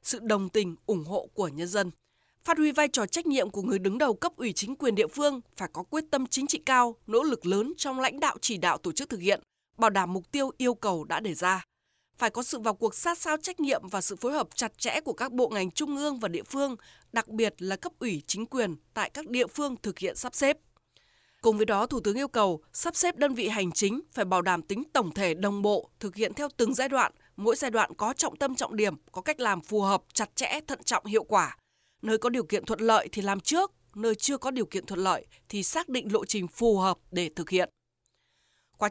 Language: Vietnamese